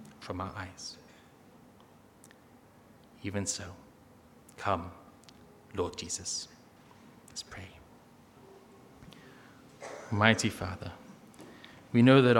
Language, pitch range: English, 115-145 Hz